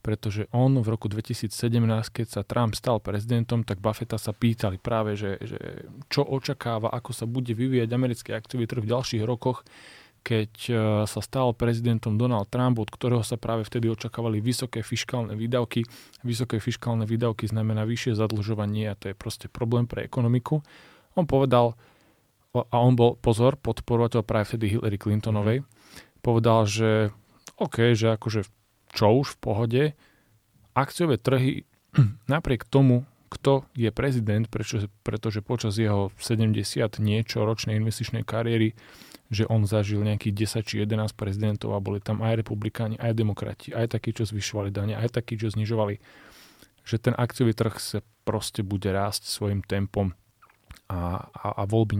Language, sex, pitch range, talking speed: Slovak, male, 105-120 Hz, 150 wpm